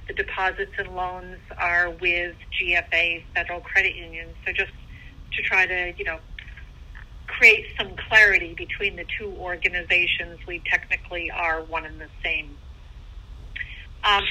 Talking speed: 135 wpm